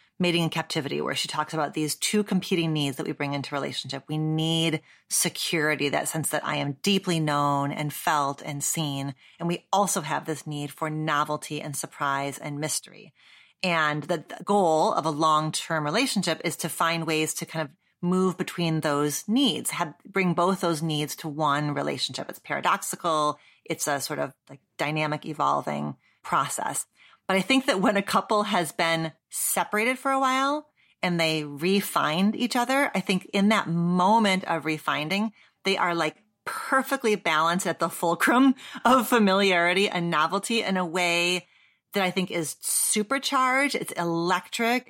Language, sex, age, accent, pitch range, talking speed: English, female, 30-49, American, 155-195 Hz, 165 wpm